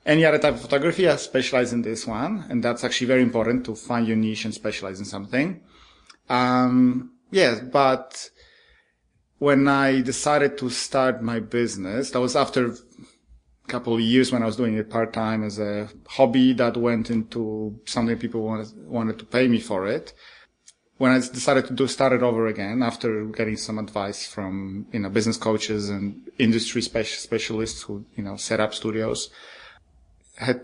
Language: English